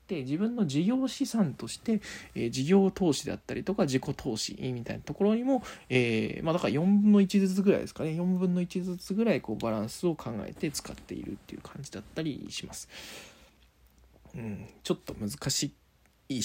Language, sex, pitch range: Japanese, male, 110-170 Hz